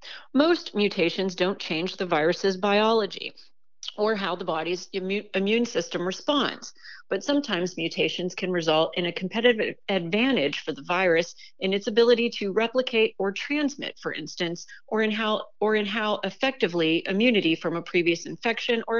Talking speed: 145 wpm